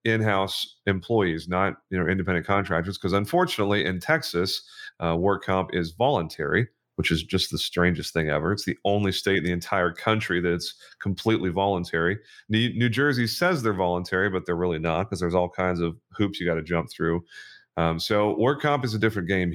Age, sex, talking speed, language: 30-49, male, 195 wpm, English